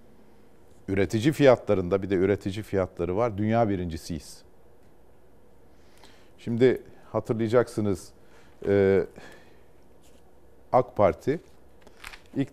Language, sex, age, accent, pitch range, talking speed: Turkish, male, 50-69, native, 100-125 Hz, 65 wpm